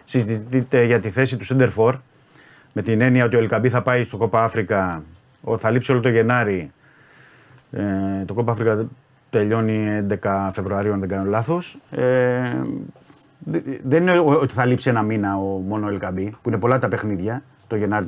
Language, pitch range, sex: Greek, 110-140 Hz, male